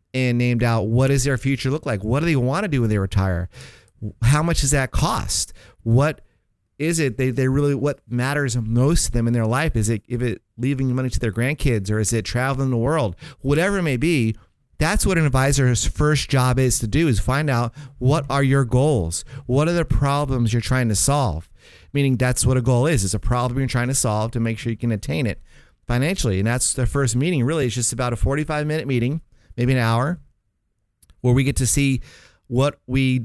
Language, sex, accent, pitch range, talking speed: English, male, American, 115-135 Hz, 220 wpm